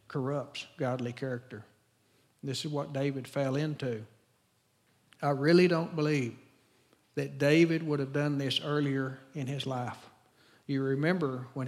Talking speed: 135 wpm